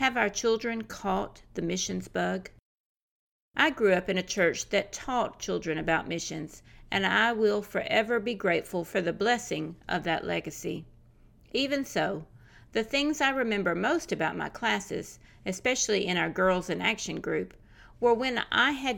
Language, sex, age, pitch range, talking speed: English, female, 50-69, 170-225 Hz, 160 wpm